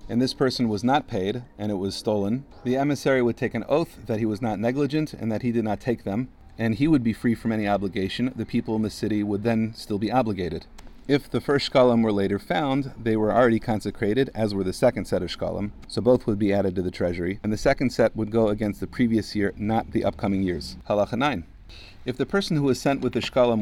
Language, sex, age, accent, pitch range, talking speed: English, male, 40-59, American, 100-125 Hz, 245 wpm